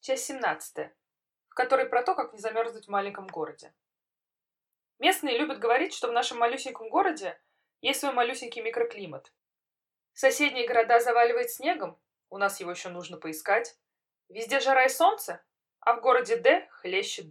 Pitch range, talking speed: 225-310 Hz, 150 wpm